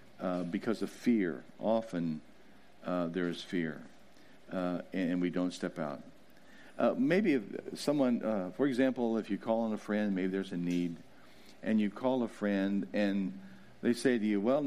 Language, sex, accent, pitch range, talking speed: English, male, American, 100-145 Hz, 180 wpm